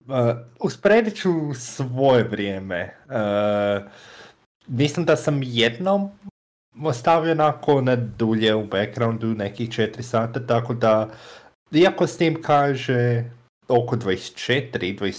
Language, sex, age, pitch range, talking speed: Croatian, male, 30-49, 100-125 Hz, 105 wpm